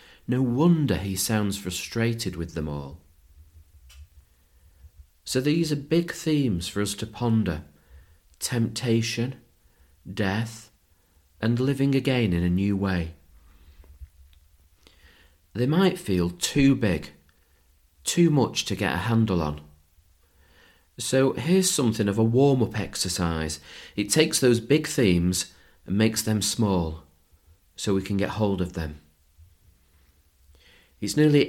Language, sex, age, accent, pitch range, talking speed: English, male, 40-59, British, 80-130 Hz, 120 wpm